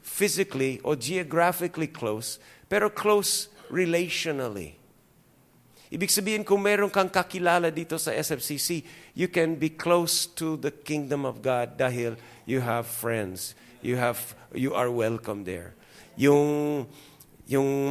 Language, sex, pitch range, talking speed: English, male, 125-180 Hz, 125 wpm